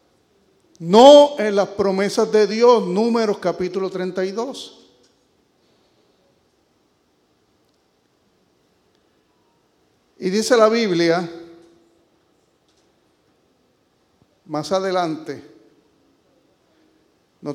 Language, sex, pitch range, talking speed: English, male, 170-230 Hz, 55 wpm